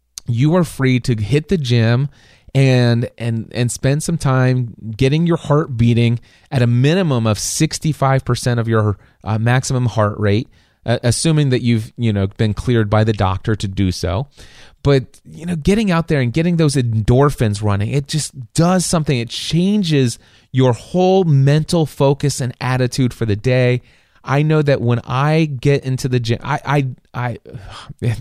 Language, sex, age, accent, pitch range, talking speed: English, male, 30-49, American, 110-140 Hz, 170 wpm